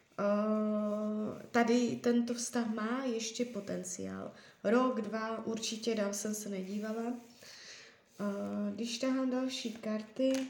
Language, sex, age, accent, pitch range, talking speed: Czech, female, 20-39, native, 210-235 Hz, 110 wpm